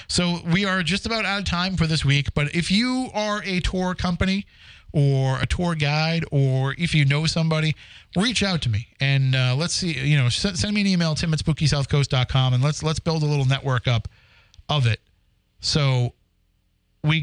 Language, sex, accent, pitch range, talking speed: English, male, American, 120-165 Hz, 200 wpm